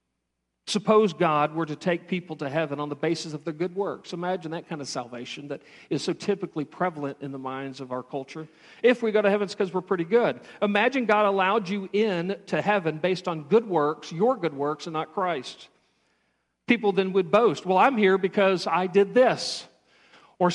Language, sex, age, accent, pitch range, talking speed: English, male, 50-69, American, 160-220 Hz, 205 wpm